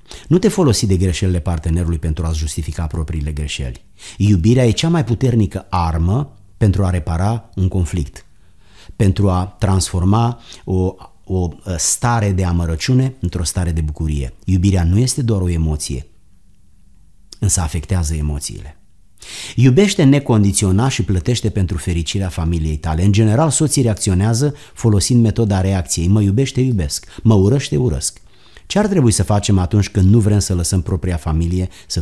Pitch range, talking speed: 90-115 Hz, 145 wpm